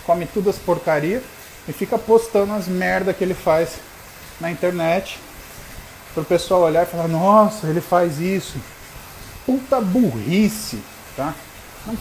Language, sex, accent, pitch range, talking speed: Portuguese, male, Brazilian, 145-190 Hz, 140 wpm